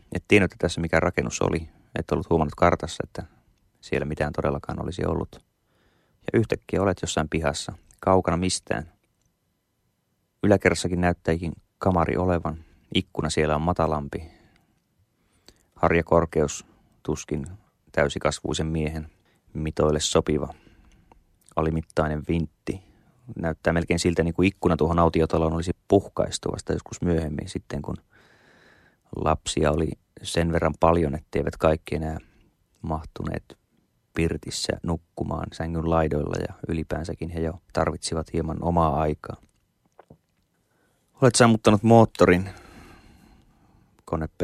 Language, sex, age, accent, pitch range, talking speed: Finnish, male, 30-49, native, 80-90 Hz, 105 wpm